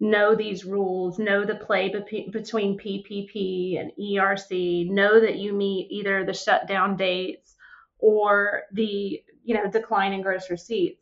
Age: 30-49